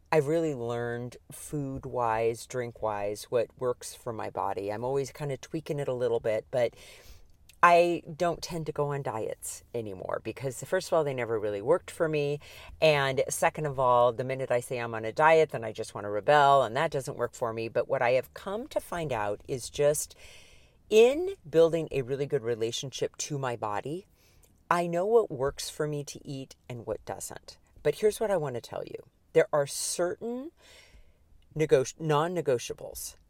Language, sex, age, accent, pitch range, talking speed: English, female, 40-59, American, 115-165 Hz, 185 wpm